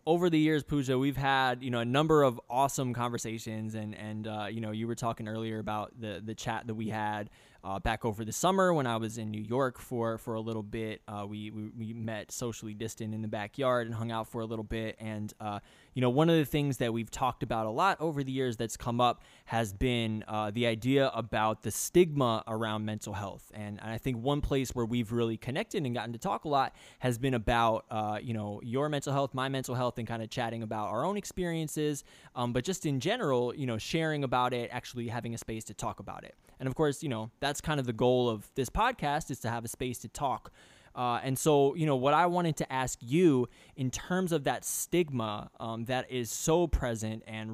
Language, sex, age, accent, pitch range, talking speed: English, male, 20-39, American, 110-135 Hz, 235 wpm